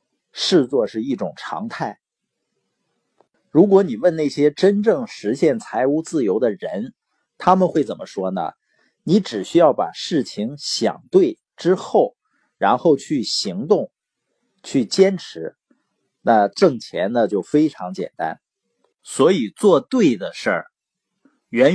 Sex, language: male, Chinese